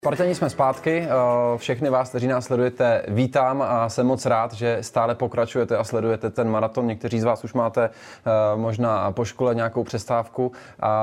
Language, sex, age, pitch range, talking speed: Czech, male, 20-39, 110-125 Hz, 170 wpm